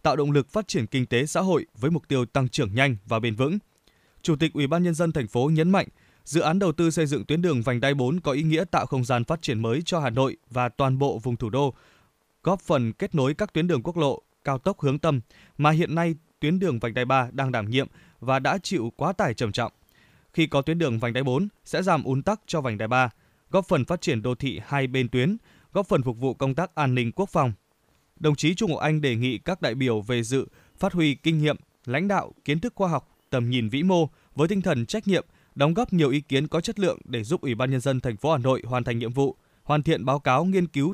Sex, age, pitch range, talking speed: male, 20-39, 125-170 Hz, 265 wpm